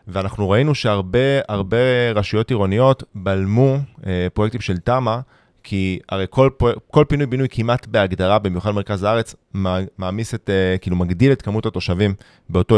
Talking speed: 140 wpm